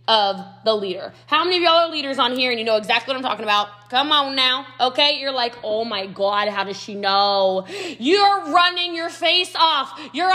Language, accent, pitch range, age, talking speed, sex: English, American, 215-320 Hz, 20-39, 220 wpm, female